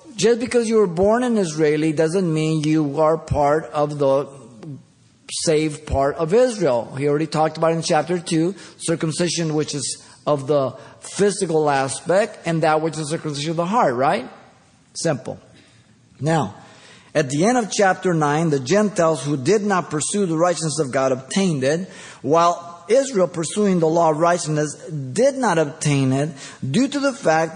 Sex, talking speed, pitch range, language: male, 165 wpm, 155-220 Hz, English